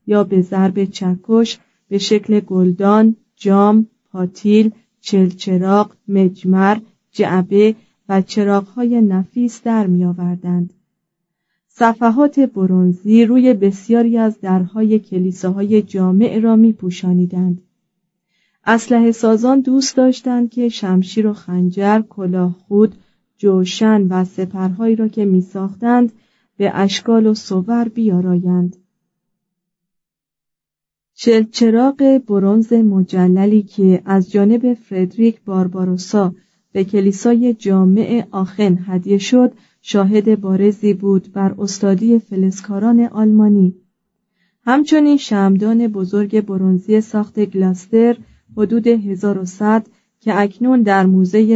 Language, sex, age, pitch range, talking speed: Persian, female, 40-59, 185-225 Hz, 95 wpm